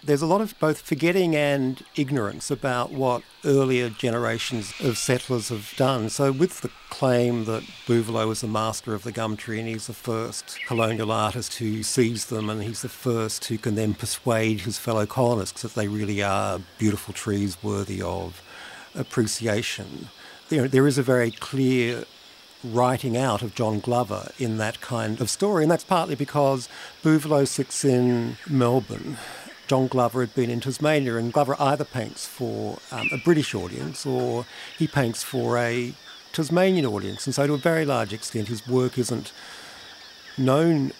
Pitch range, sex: 110-135 Hz, male